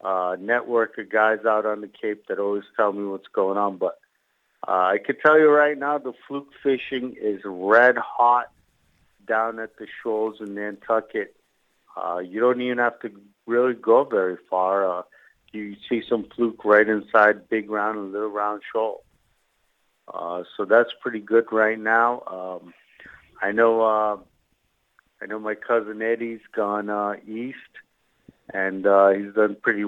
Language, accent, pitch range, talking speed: English, American, 100-115 Hz, 165 wpm